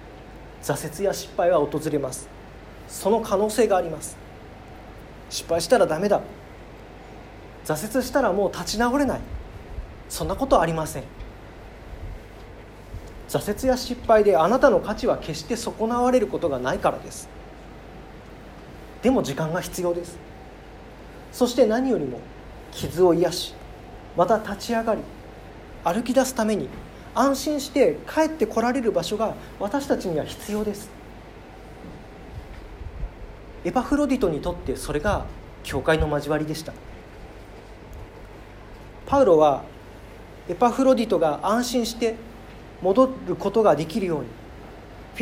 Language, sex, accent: Japanese, male, native